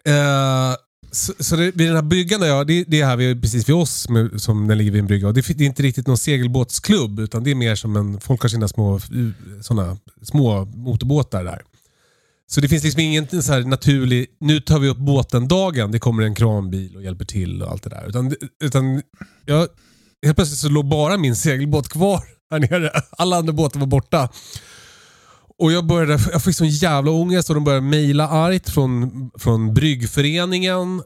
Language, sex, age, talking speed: Swedish, male, 30-49, 195 wpm